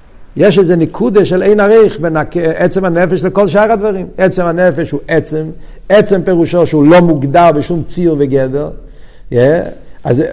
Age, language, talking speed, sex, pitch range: 60-79, Hebrew, 150 wpm, male, 145-200 Hz